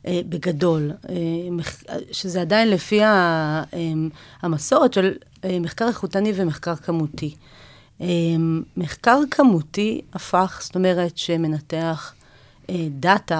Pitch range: 165-195 Hz